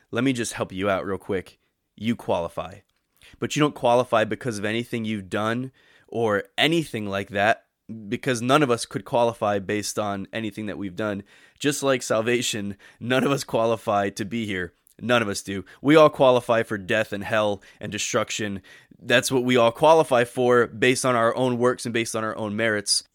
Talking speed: 195 wpm